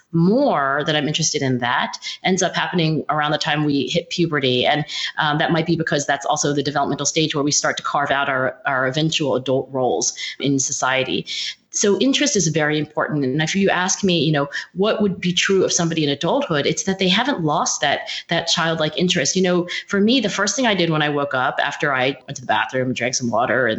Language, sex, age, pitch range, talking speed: English, female, 30-49, 145-185 Hz, 230 wpm